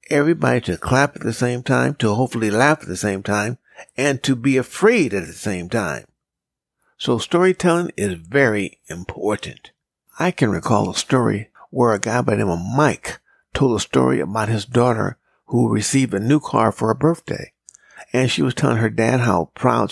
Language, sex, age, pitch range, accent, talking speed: English, male, 60-79, 105-140 Hz, American, 185 wpm